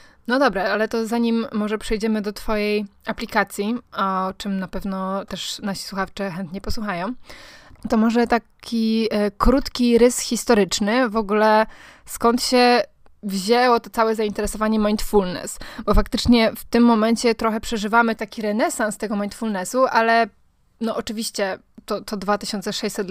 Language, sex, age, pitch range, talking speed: Polish, female, 20-39, 210-235 Hz, 130 wpm